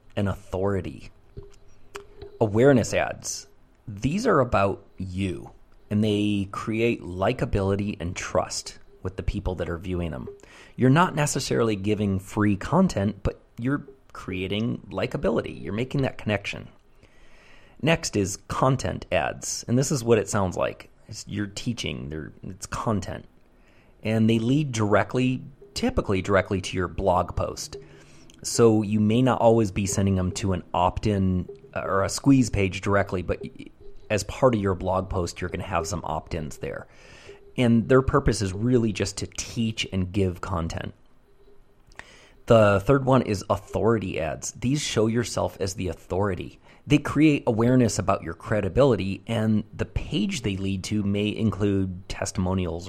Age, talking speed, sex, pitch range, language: 30-49, 145 wpm, male, 95-120 Hz, English